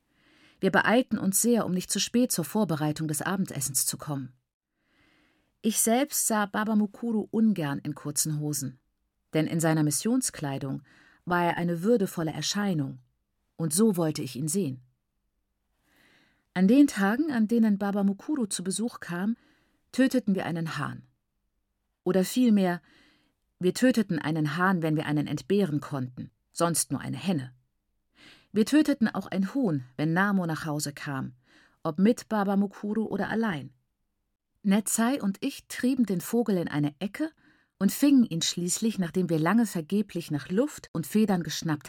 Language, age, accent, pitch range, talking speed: German, 50-69, German, 155-215 Hz, 150 wpm